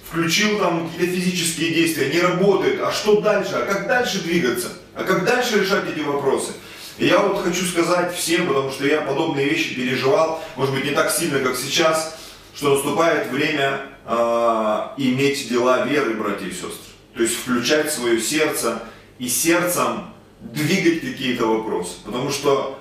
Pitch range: 135-170 Hz